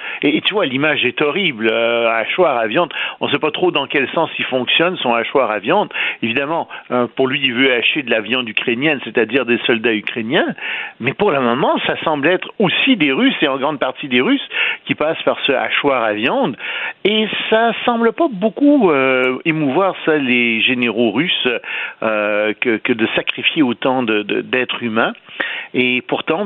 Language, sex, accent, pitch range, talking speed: French, male, French, 125-195 Hz, 190 wpm